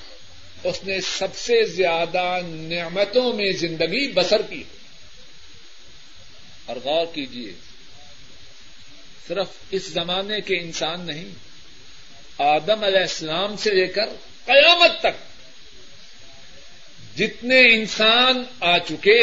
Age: 50-69